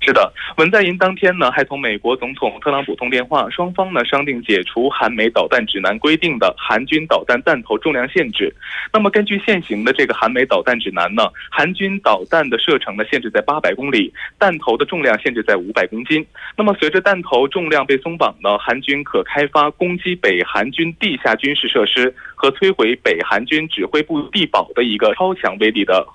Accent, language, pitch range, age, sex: Chinese, Korean, 140-190 Hz, 20-39, male